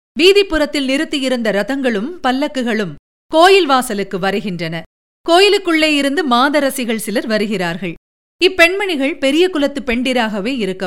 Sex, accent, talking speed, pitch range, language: female, native, 95 wpm, 215-300 Hz, Tamil